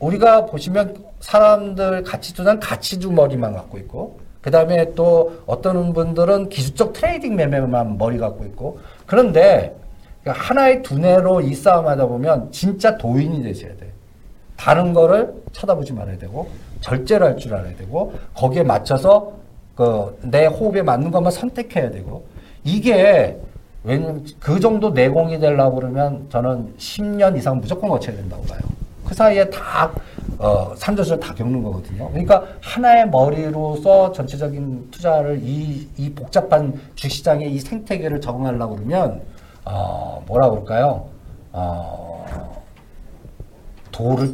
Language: Korean